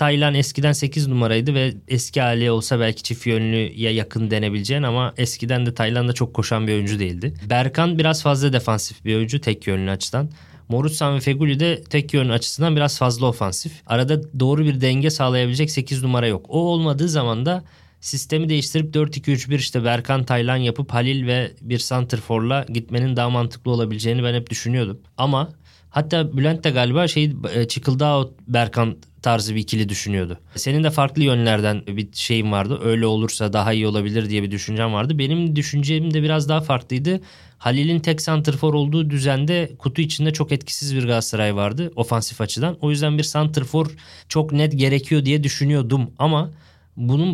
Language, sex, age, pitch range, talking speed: Turkish, male, 20-39, 115-150 Hz, 165 wpm